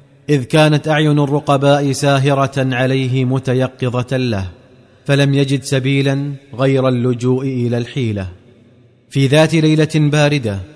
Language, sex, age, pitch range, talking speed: Arabic, male, 30-49, 130-145 Hz, 105 wpm